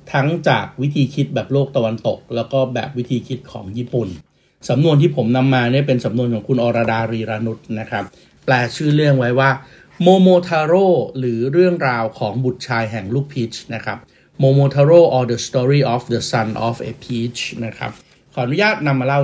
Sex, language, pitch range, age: male, Thai, 120-145 Hz, 60-79